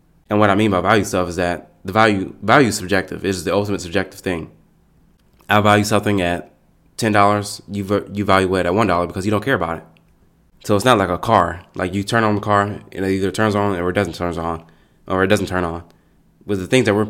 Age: 20-39